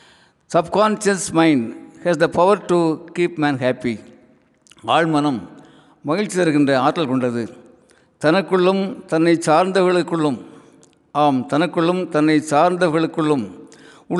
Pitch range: 135-165 Hz